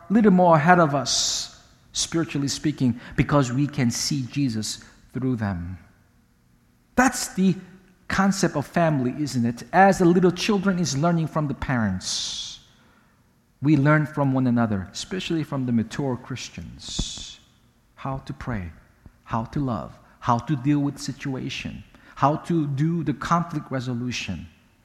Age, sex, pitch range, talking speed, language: 50-69, male, 115-170 Hz, 140 wpm, English